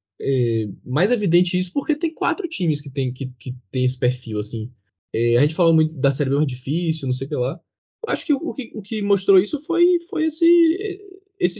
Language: Portuguese